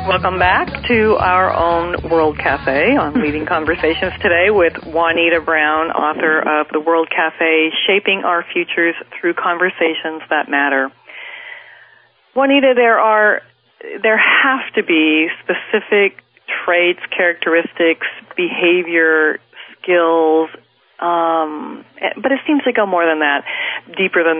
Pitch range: 150-185 Hz